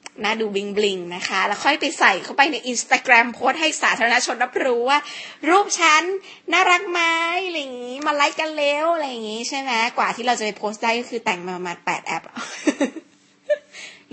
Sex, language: female, Thai